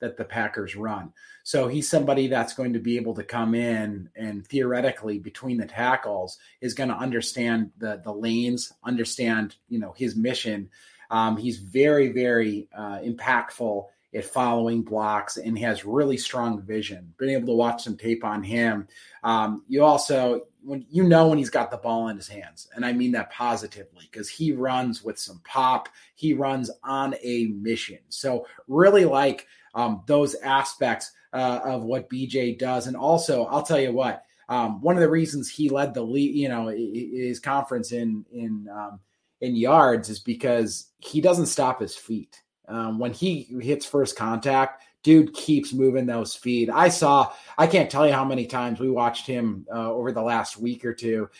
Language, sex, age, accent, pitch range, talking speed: English, male, 30-49, American, 115-140 Hz, 180 wpm